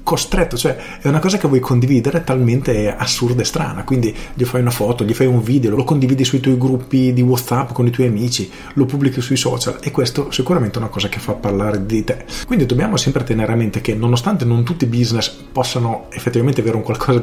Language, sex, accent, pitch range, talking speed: Italian, male, native, 110-135 Hz, 225 wpm